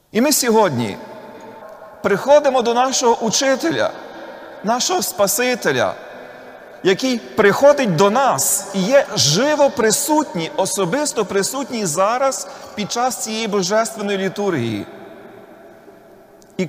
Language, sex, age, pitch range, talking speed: Ukrainian, male, 40-59, 150-220 Hz, 95 wpm